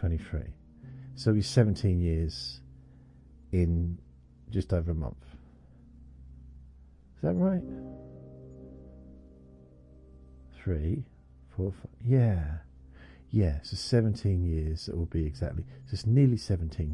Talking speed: 105 wpm